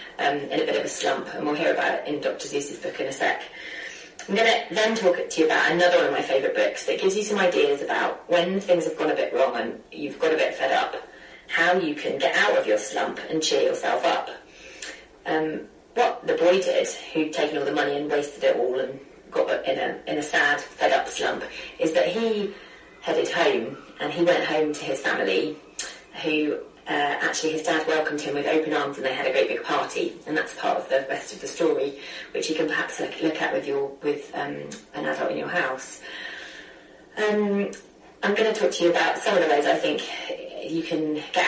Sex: female